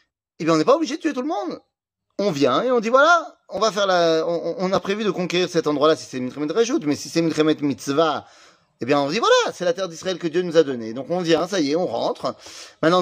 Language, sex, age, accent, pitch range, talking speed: French, male, 30-49, French, 150-235 Hz, 280 wpm